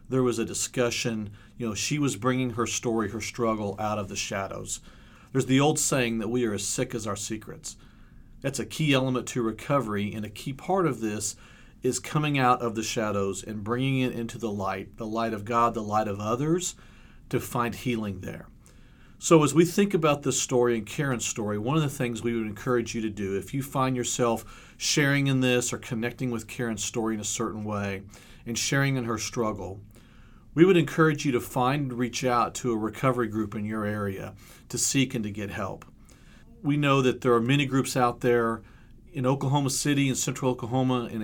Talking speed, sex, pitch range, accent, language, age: 210 wpm, male, 110-130 Hz, American, English, 40-59